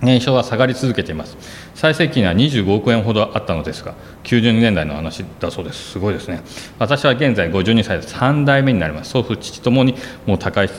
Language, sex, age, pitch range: Japanese, male, 40-59, 90-120 Hz